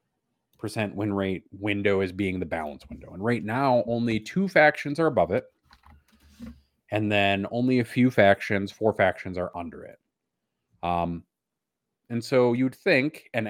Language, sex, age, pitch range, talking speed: English, male, 30-49, 90-110 Hz, 155 wpm